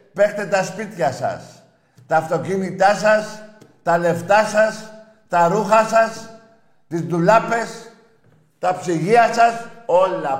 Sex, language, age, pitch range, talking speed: male, Greek, 50-69, 155-225 Hz, 110 wpm